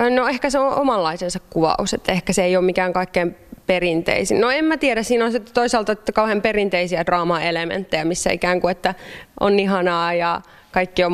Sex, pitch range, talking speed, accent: female, 165-185 Hz, 195 wpm, native